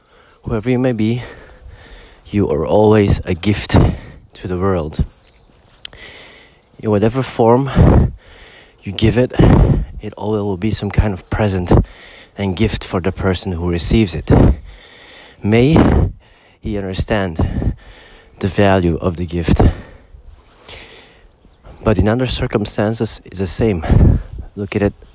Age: 30-49